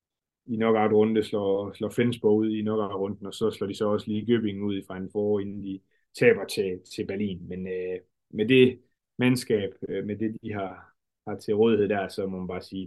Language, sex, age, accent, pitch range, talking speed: Danish, male, 20-39, native, 105-125 Hz, 220 wpm